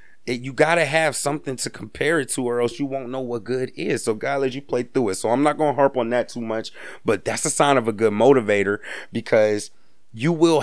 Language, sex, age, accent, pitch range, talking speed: English, male, 30-49, American, 110-140 Hz, 250 wpm